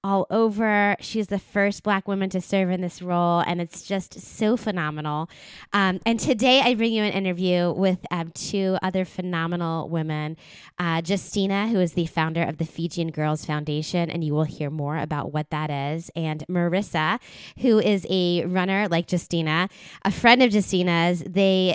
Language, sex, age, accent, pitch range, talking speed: English, female, 20-39, American, 160-190 Hz, 175 wpm